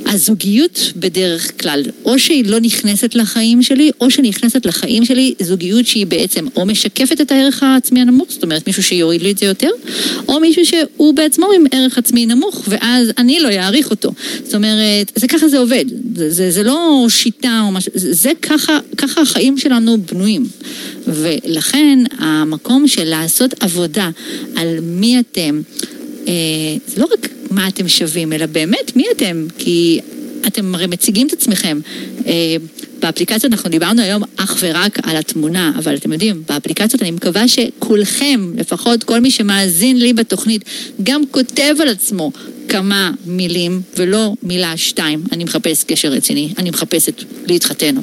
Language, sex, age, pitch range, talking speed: Hebrew, female, 40-59, 180-260 Hz, 155 wpm